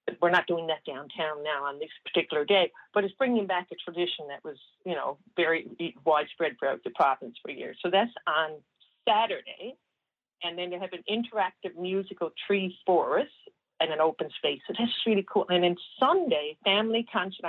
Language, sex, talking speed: English, female, 180 wpm